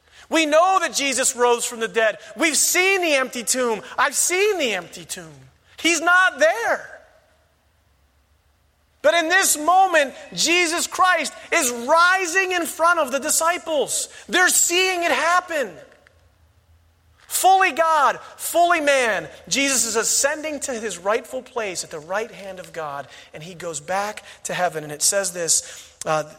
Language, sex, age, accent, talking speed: English, male, 40-59, American, 150 wpm